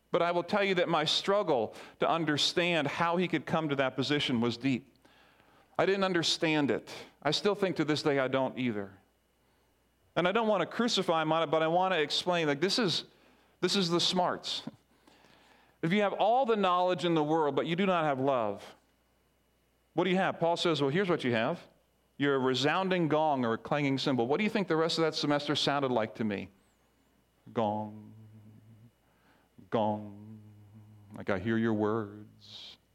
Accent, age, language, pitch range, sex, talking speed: American, 40-59, English, 110-170 Hz, male, 195 wpm